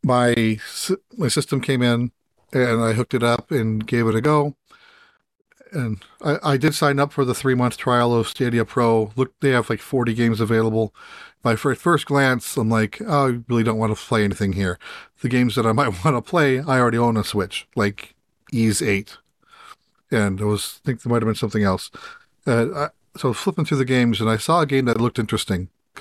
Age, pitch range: 40-59, 110-140 Hz